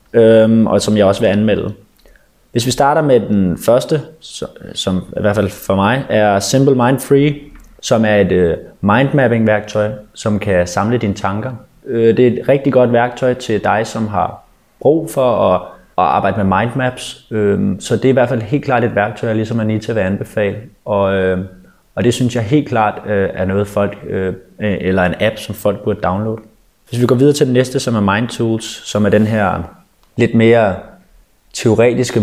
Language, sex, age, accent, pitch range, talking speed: Danish, male, 20-39, native, 100-125 Hz, 195 wpm